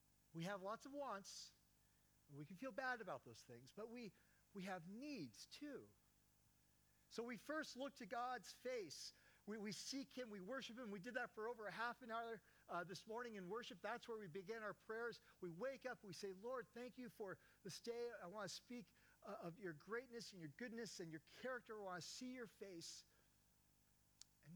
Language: English